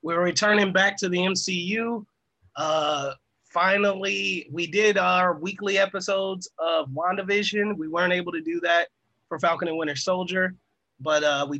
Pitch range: 150-185 Hz